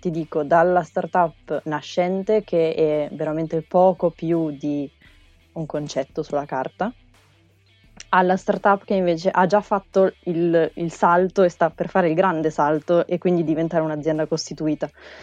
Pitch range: 155-180 Hz